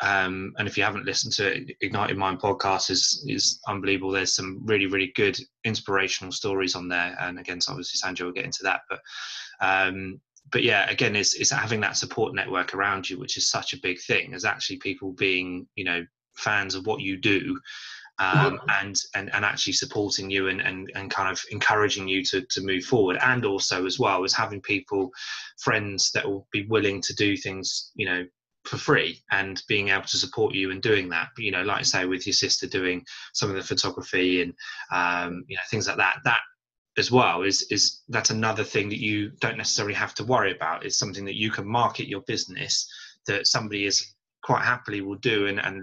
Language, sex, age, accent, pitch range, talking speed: English, male, 20-39, British, 95-105 Hz, 210 wpm